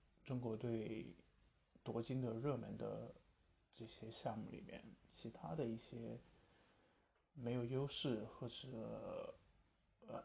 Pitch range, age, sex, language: 115-125 Hz, 20-39, male, Chinese